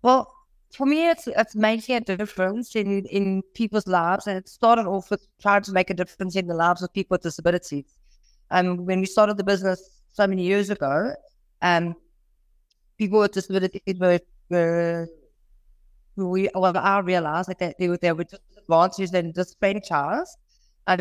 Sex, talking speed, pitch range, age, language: female, 165 wpm, 170-200 Hz, 30-49, English